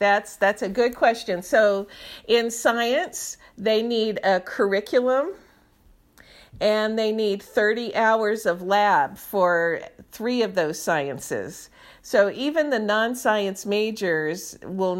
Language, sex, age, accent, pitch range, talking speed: English, female, 50-69, American, 195-240 Hz, 120 wpm